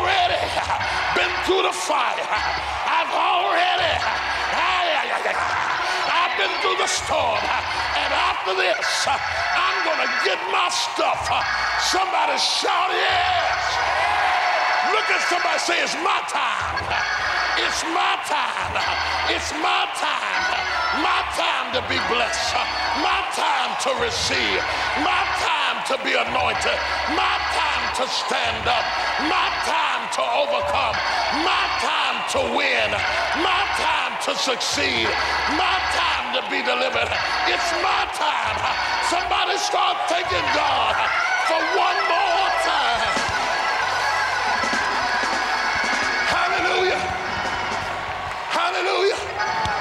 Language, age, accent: English, 50-69, American